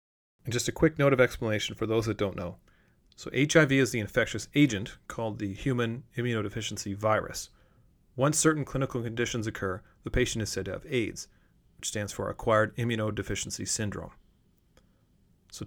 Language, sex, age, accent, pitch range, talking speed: English, male, 30-49, American, 100-135 Hz, 160 wpm